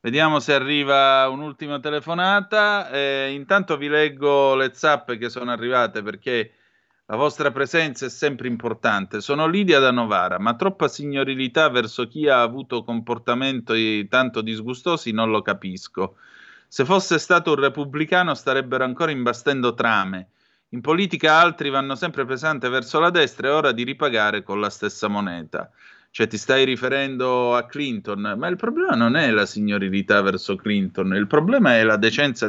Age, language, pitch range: 30-49, Italian, 110-150 Hz